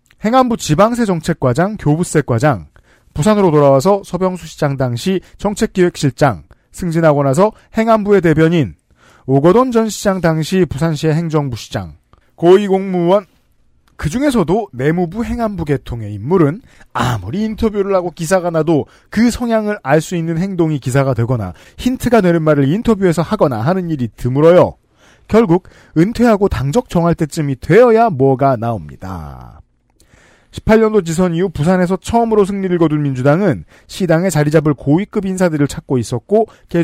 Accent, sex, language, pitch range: native, male, Korean, 140-195 Hz